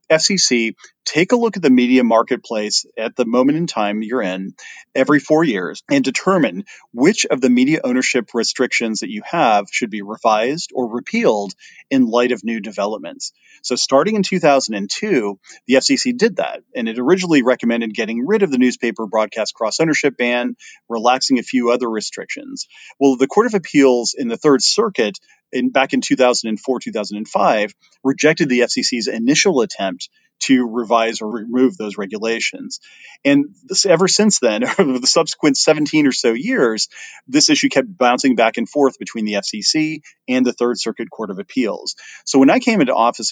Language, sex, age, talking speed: English, male, 40-59, 170 wpm